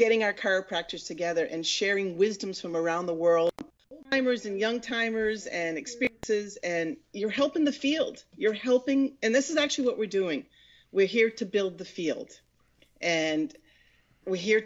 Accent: American